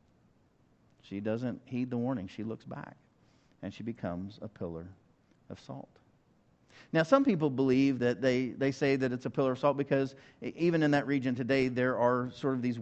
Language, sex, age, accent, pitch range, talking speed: English, male, 50-69, American, 115-145 Hz, 185 wpm